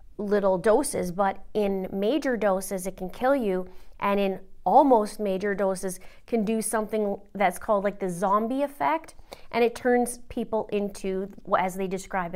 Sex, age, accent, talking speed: female, 30-49, American, 155 wpm